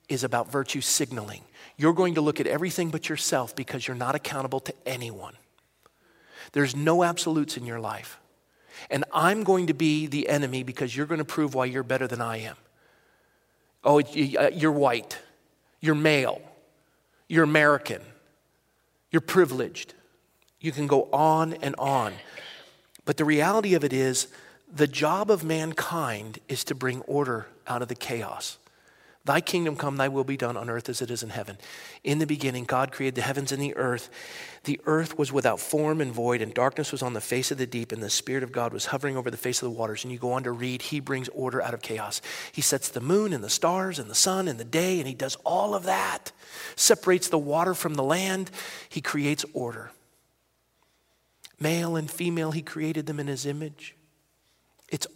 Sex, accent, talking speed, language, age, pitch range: male, American, 195 wpm, English, 40-59, 125-160 Hz